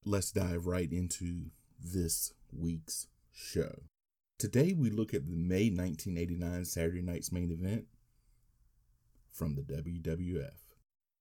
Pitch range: 85-100 Hz